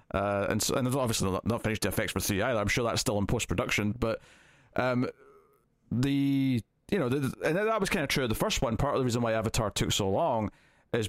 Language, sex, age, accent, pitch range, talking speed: English, male, 20-39, British, 105-125 Hz, 245 wpm